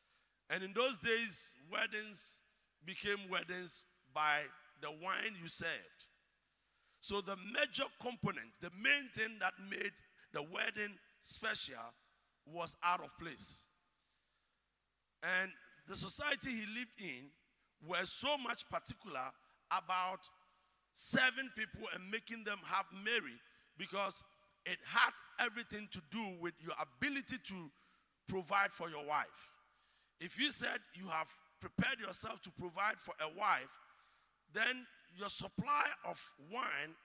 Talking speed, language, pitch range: 125 wpm, English, 175-220 Hz